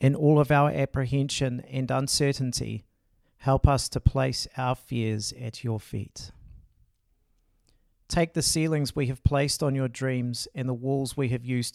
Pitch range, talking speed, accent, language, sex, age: 105-135 Hz, 160 wpm, Australian, English, male, 40-59